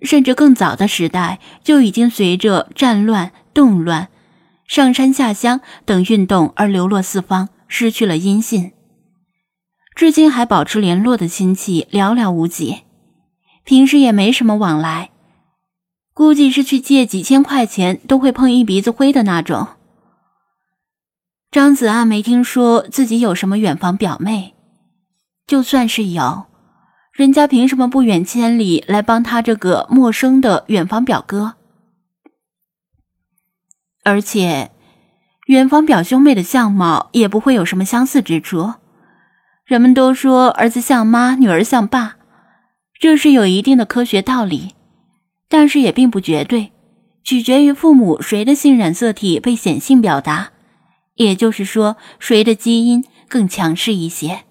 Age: 10-29